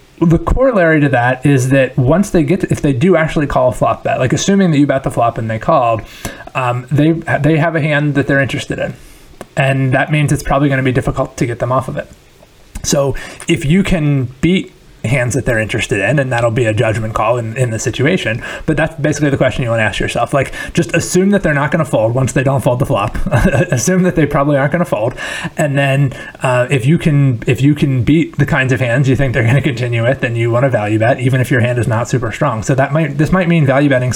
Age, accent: 30-49, American